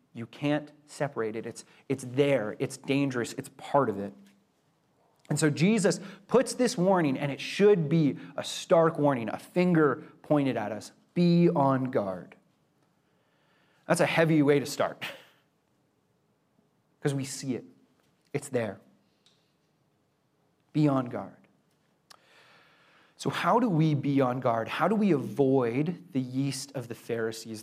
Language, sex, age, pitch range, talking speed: English, male, 30-49, 130-165 Hz, 140 wpm